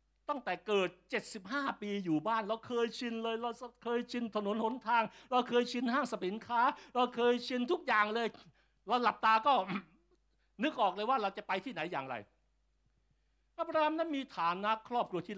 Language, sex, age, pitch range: Thai, male, 60-79, 170-235 Hz